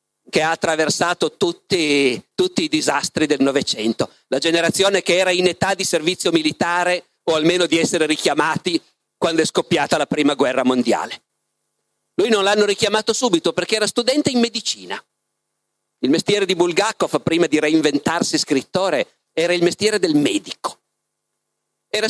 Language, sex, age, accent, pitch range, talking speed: Italian, male, 40-59, native, 160-215 Hz, 145 wpm